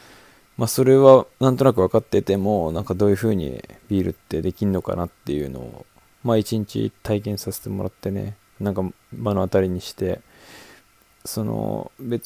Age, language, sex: 20-39, Japanese, male